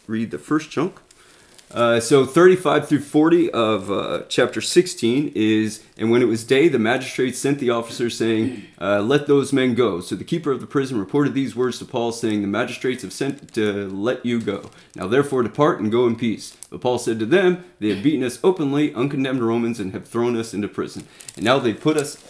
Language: English